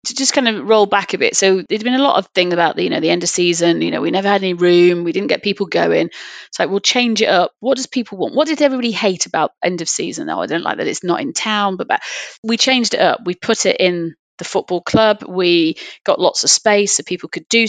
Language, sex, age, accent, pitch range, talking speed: English, female, 30-49, British, 175-230 Hz, 285 wpm